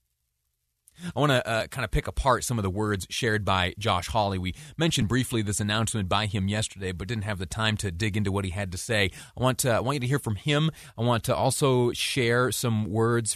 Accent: American